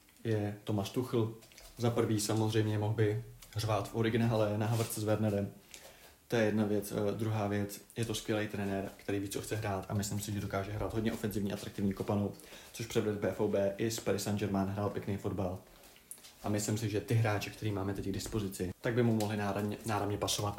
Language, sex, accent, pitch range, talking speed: Czech, male, native, 105-115 Hz, 200 wpm